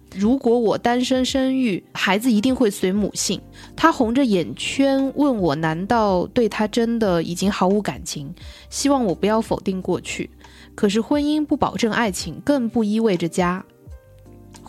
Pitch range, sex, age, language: 180-255 Hz, female, 20-39, Chinese